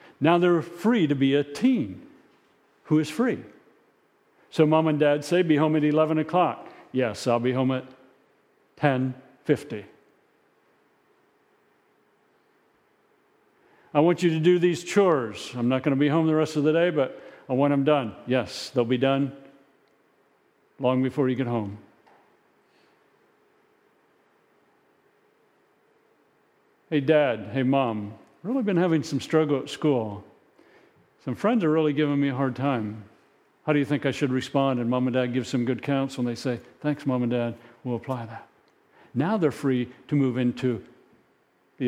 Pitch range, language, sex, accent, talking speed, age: 130-175 Hz, English, male, American, 160 wpm, 50-69